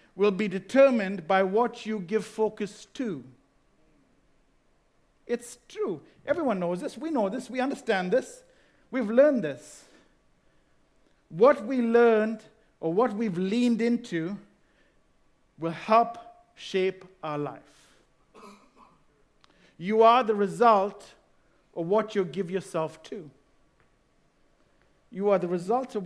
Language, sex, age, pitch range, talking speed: English, male, 50-69, 200-250 Hz, 115 wpm